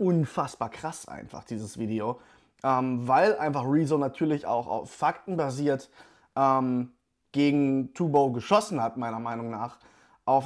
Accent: German